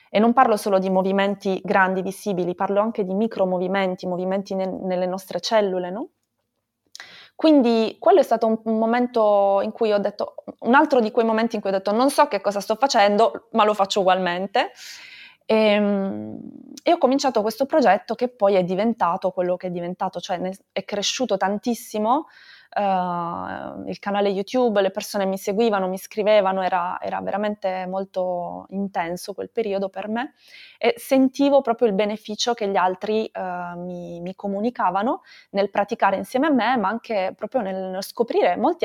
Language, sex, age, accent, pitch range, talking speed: Italian, female, 20-39, native, 185-235 Hz, 170 wpm